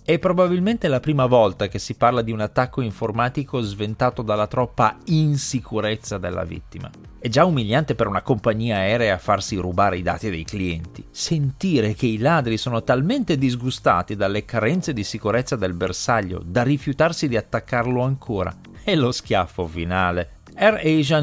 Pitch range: 105-150 Hz